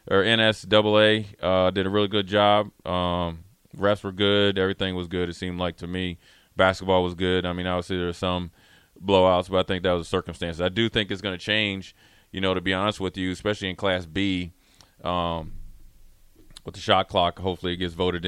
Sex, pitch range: male, 90-95 Hz